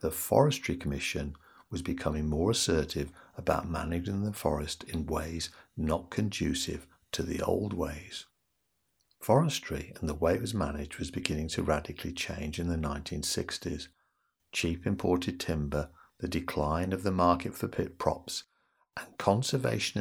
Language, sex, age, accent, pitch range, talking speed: English, male, 60-79, British, 75-95 Hz, 140 wpm